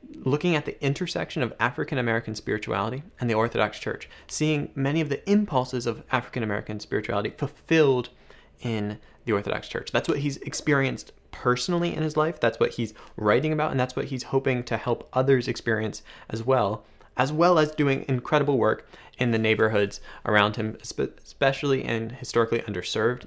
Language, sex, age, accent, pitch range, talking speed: English, male, 20-39, American, 110-135 Hz, 160 wpm